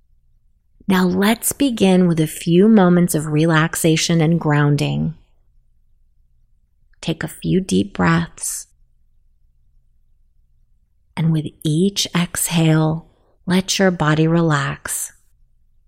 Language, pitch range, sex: English, 145-185 Hz, female